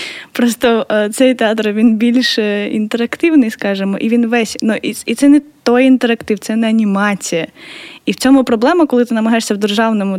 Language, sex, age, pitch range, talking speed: Ukrainian, female, 20-39, 220-275 Hz, 170 wpm